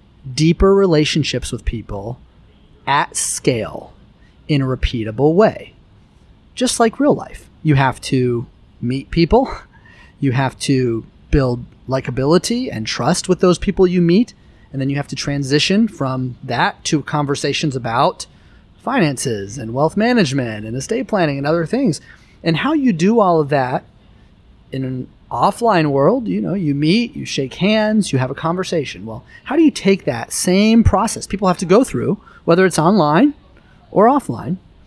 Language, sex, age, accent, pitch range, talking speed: English, male, 30-49, American, 135-195 Hz, 160 wpm